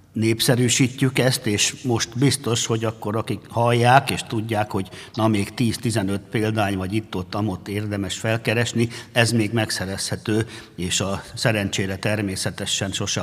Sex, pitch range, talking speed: male, 90-110 Hz, 130 wpm